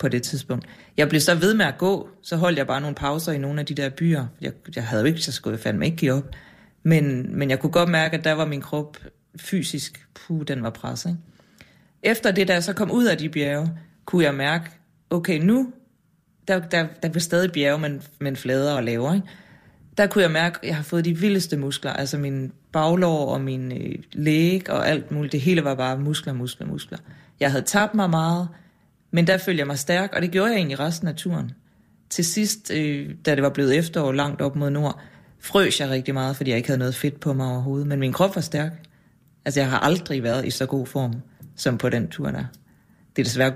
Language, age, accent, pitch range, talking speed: Danish, 30-49, native, 140-180 Hz, 235 wpm